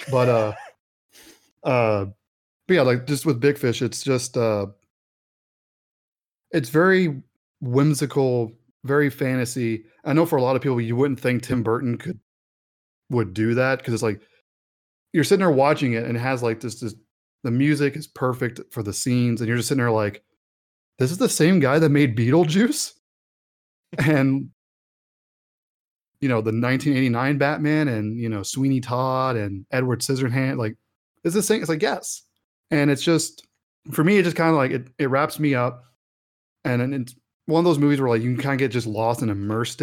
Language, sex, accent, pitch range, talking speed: English, male, American, 115-145 Hz, 185 wpm